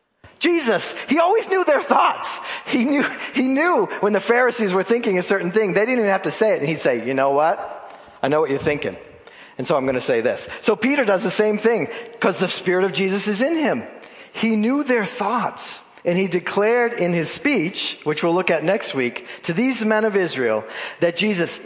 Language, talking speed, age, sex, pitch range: English, 220 wpm, 40-59, male, 150-220 Hz